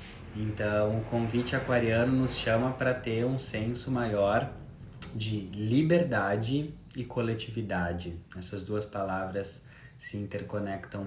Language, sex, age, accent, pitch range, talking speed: Portuguese, male, 20-39, Brazilian, 100-120 Hz, 110 wpm